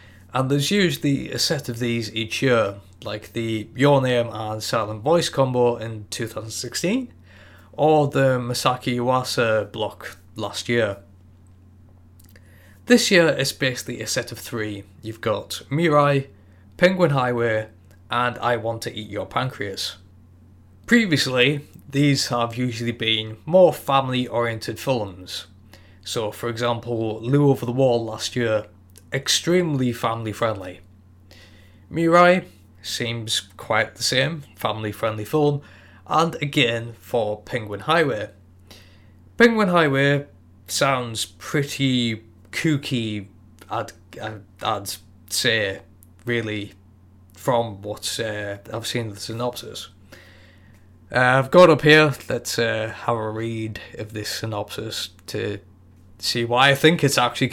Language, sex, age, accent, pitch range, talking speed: English, male, 20-39, British, 95-130 Hz, 120 wpm